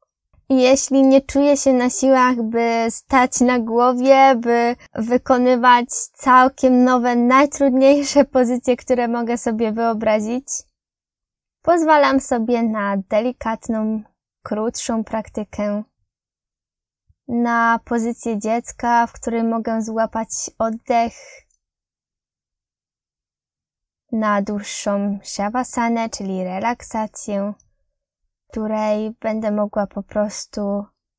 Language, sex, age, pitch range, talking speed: Polish, female, 20-39, 215-260 Hz, 85 wpm